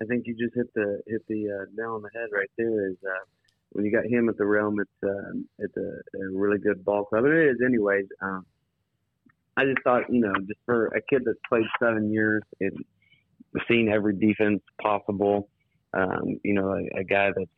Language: English